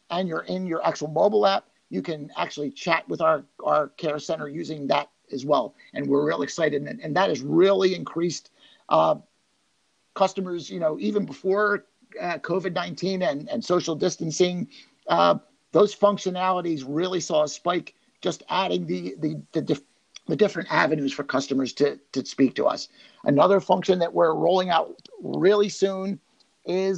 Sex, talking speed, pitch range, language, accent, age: male, 165 wpm, 155-195 Hz, English, American, 50-69